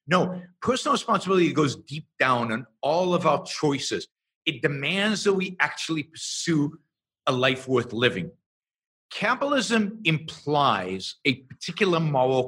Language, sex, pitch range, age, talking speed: English, male, 130-195 Hz, 50-69, 125 wpm